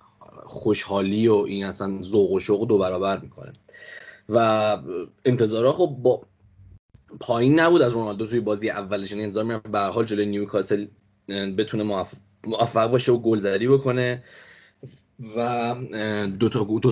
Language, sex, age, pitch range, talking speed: English, male, 20-39, 100-120 Hz, 125 wpm